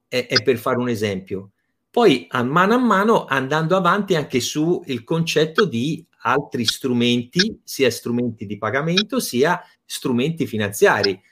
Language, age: Italian, 30-49